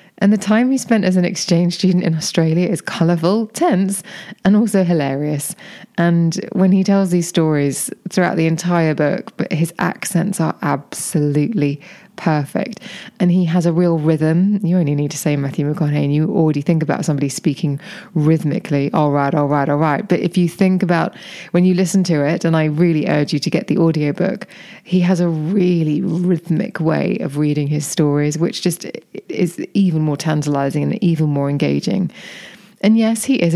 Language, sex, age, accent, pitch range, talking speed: English, female, 20-39, British, 150-185 Hz, 185 wpm